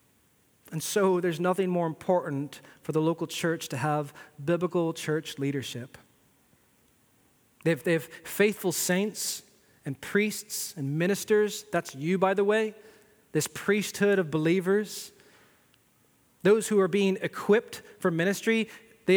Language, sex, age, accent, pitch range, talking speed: English, male, 30-49, American, 150-195 Hz, 130 wpm